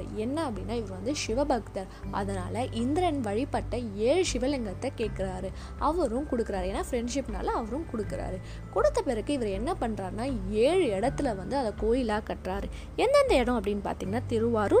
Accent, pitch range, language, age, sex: native, 205-280 Hz, Tamil, 20-39, female